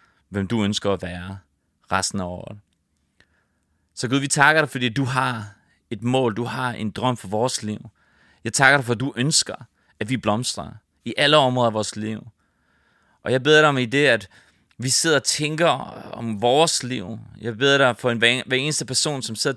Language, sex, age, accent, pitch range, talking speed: English, male, 30-49, Danish, 110-135 Hz, 200 wpm